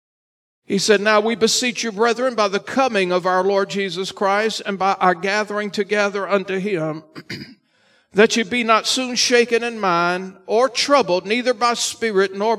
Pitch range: 180-225 Hz